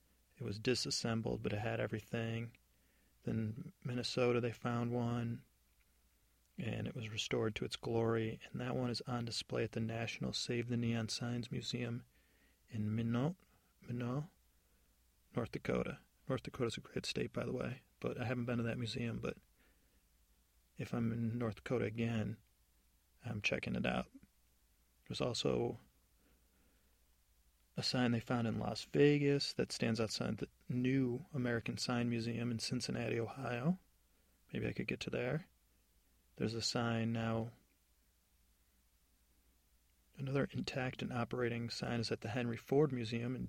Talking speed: 150 wpm